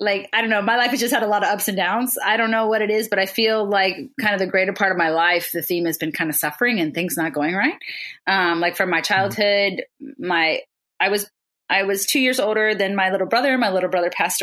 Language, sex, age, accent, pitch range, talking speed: English, female, 30-49, American, 175-215 Hz, 275 wpm